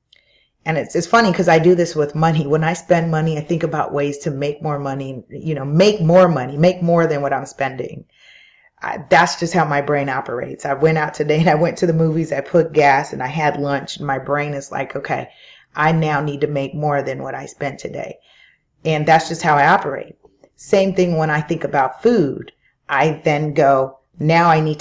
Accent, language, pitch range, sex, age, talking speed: American, English, 145-170 Hz, female, 30-49, 225 wpm